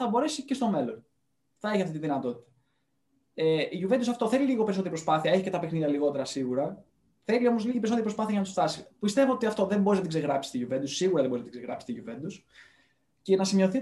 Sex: male